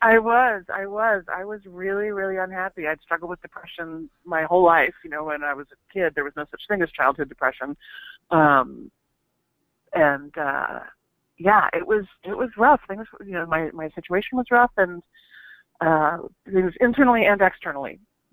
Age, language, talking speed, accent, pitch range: 40-59, English, 180 wpm, American, 150-195 Hz